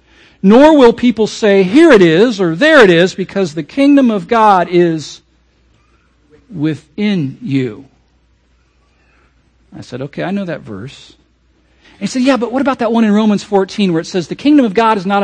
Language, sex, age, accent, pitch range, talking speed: English, male, 50-69, American, 150-255 Hz, 180 wpm